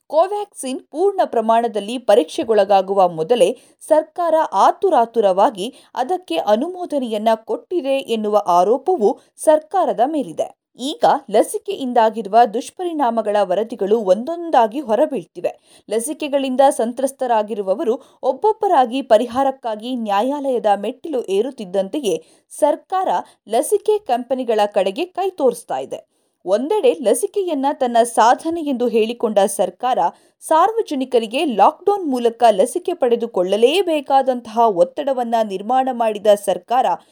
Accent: native